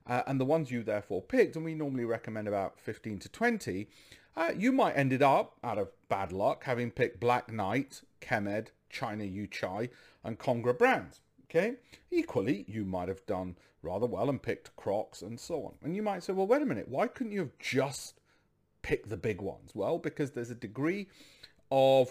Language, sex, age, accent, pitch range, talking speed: English, male, 40-59, British, 105-140 Hz, 195 wpm